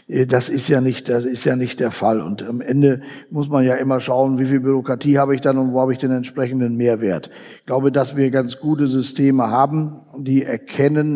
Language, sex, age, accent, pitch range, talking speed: German, male, 60-79, German, 130-145 Hz, 220 wpm